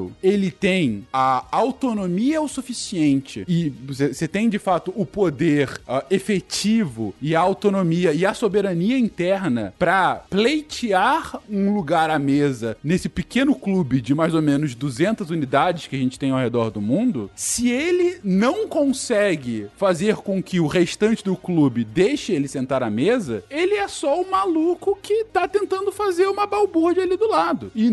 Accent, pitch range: Brazilian, 165-265 Hz